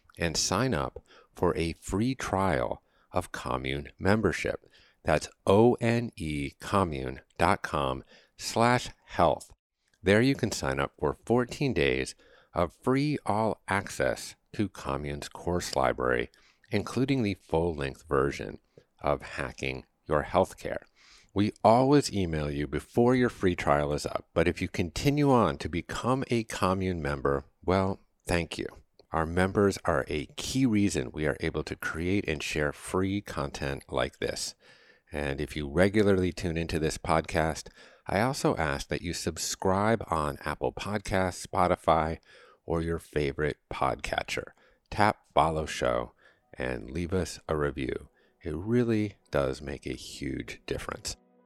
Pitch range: 75-105 Hz